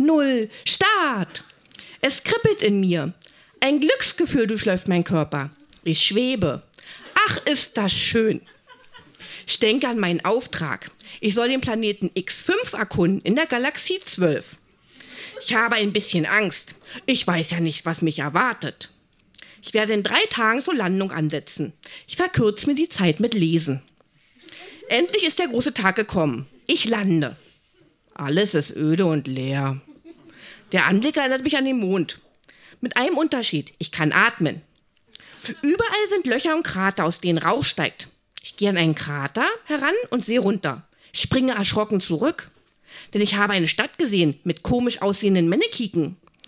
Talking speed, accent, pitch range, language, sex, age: 150 wpm, German, 170-265 Hz, German, female, 50-69